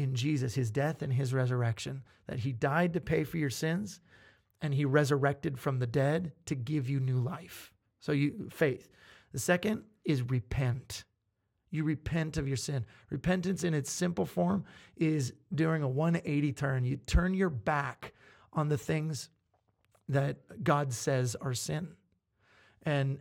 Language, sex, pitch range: English, male, 130-165 Hz